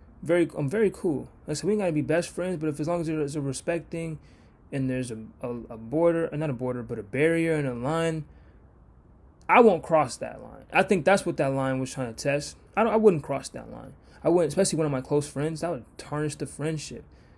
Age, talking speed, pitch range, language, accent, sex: 20-39, 250 wpm, 115-150 Hz, English, American, male